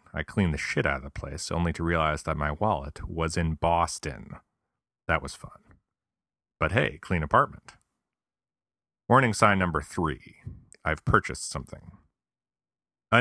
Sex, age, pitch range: male, 40-59, 80-95 Hz